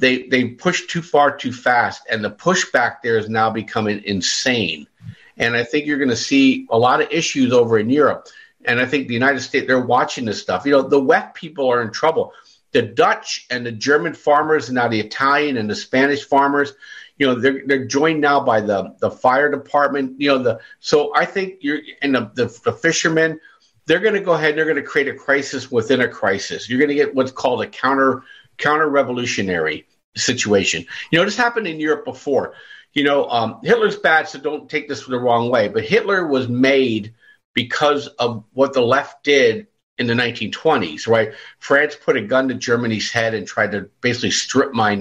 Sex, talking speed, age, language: male, 205 wpm, 50-69, English